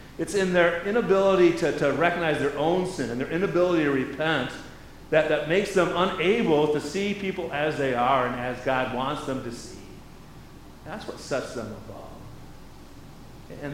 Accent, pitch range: American, 130-180 Hz